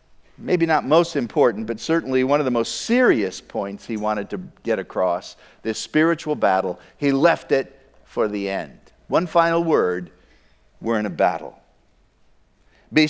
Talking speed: 155 wpm